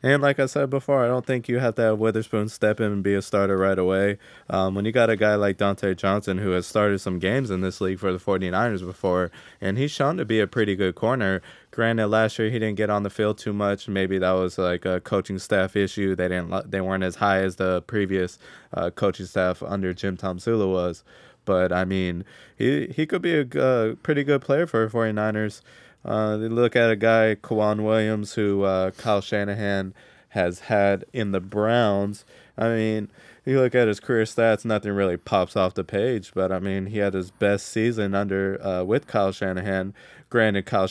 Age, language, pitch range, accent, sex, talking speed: 20-39, English, 95-110 Hz, American, male, 215 wpm